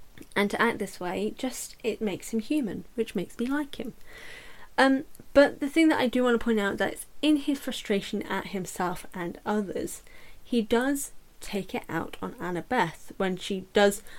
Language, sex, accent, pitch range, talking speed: English, female, British, 195-255 Hz, 185 wpm